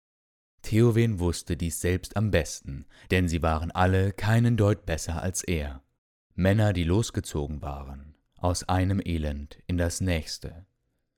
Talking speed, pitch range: 135 wpm, 80-100 Hz